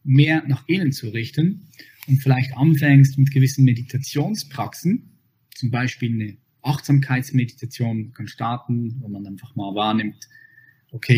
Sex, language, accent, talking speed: male, German, German, 125 wpm